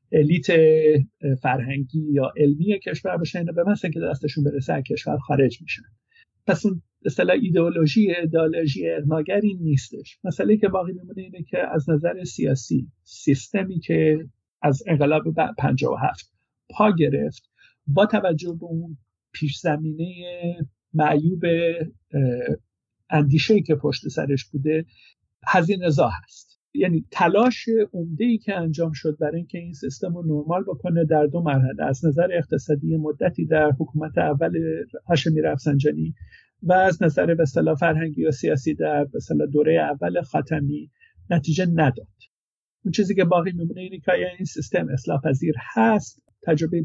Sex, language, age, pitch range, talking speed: male, Persian, 50-69, 150-180 Hz, 135 wpm